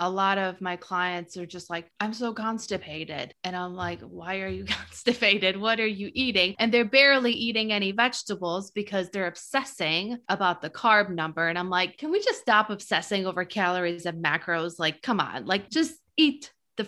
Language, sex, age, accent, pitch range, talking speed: English, female, 20-39, American, 195-240 Hz, 190 wpm